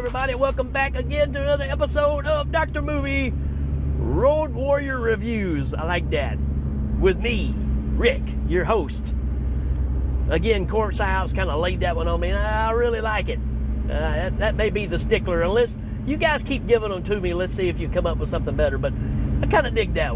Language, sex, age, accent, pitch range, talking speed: English, male, 40-59, American, 65-75 Hz, 195 wpm